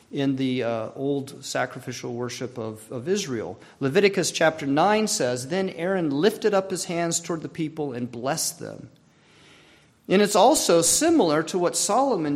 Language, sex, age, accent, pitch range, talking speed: English, male, 40-59, American, 130-170 Hz, 155 wpm